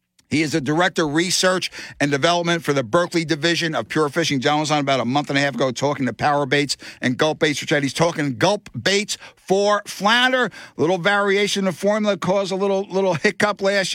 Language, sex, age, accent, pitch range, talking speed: English, male, 60-79, American, 145-210 Hz, 220 wpm